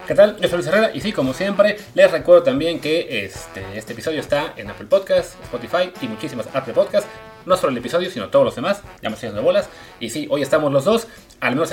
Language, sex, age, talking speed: Spanish, male, 30-49, 230 wpm